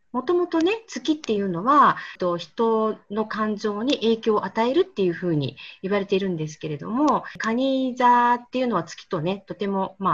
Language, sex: Japanese, female